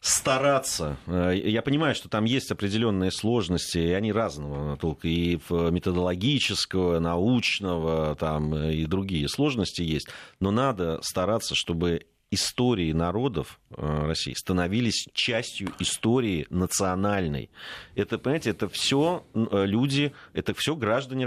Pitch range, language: 95-140 Hz, Russian